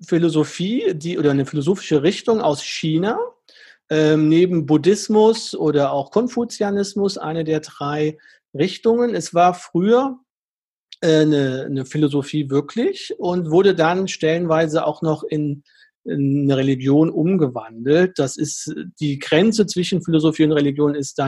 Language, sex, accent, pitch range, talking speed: German, male, German, 145-185 Hz, 135 wpm